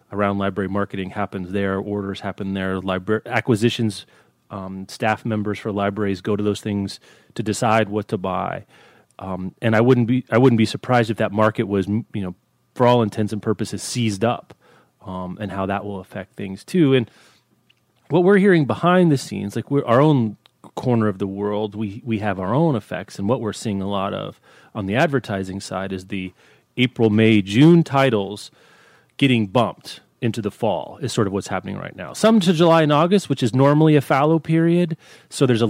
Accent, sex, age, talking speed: American, male, 30-49, 200 wpm